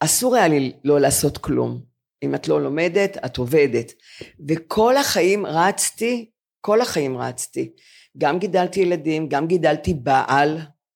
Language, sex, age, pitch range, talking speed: Hebrew, female, 40-59, 145-200 Hz, 130 wpm